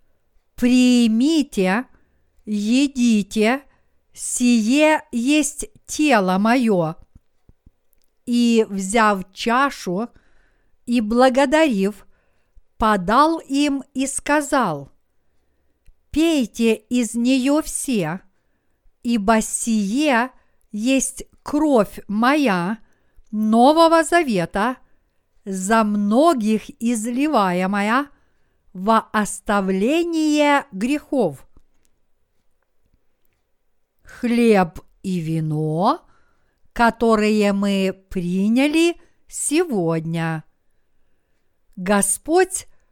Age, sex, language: 50-69, female, Russian